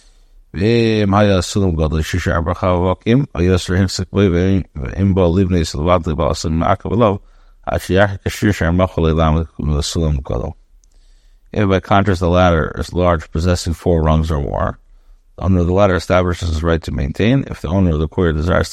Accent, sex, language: American, male, English